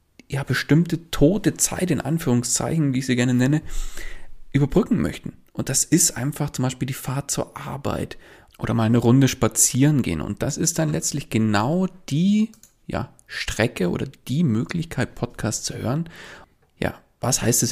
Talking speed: 165 wpm